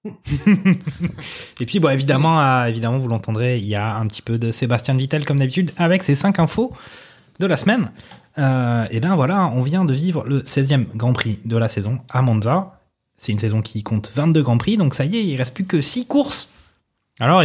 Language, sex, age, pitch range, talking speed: French, male, 20-39, 115-150 Hz, 215 wpm